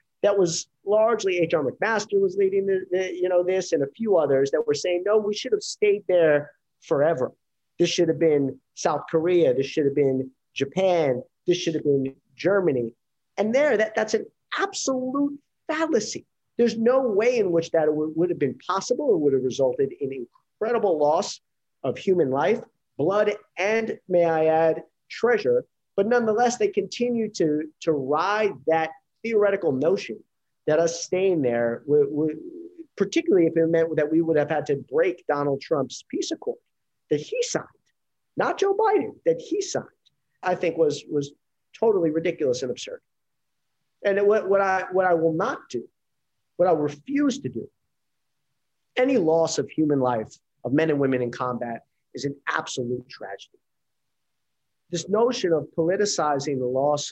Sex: male